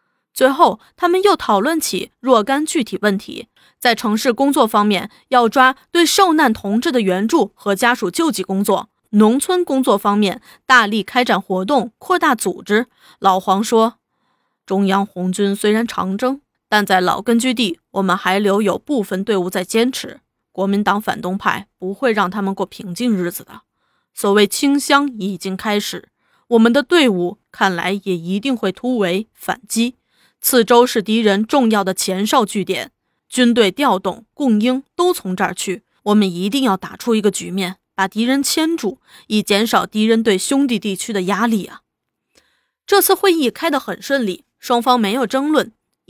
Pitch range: 195-270 Hz